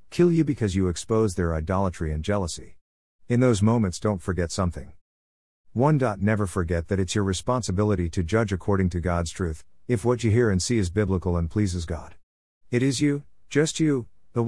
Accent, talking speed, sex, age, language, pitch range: American, 185 wpm, male, 50-69, English, 90-120 Hz